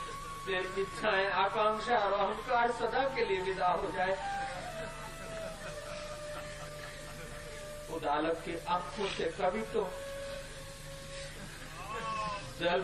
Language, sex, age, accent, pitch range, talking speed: Hindi, male, 40-59, native, 150-195 Hz, 85 wpm